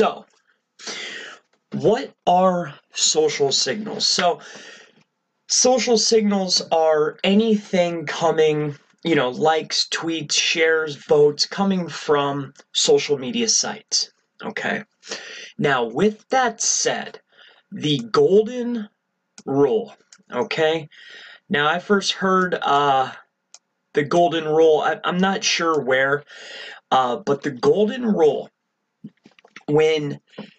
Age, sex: 30-49, male